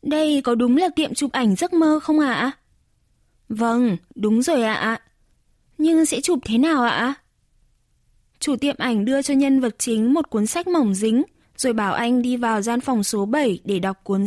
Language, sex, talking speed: Vietnamese, female, 205 wpm